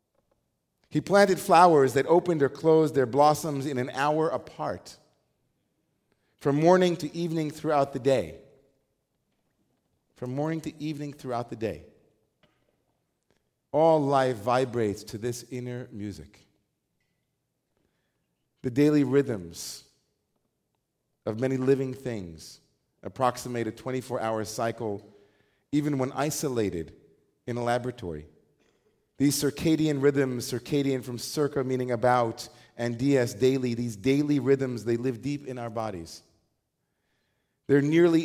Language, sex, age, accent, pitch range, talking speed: English, male, 40-59, American, 120-150 Hz, 115 wpm